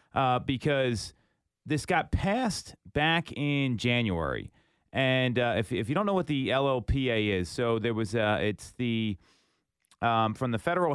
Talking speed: 165 wpm